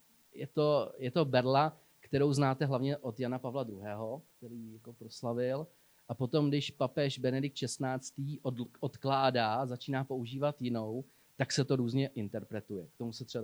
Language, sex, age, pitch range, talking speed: Slovak, male, 30-49, 125-150 Hz, 150 wpm